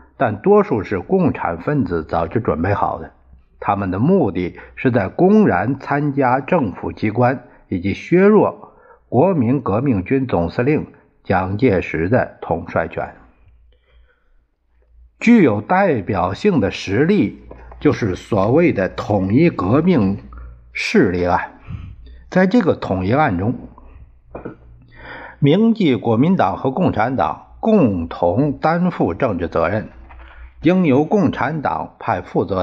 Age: 60-79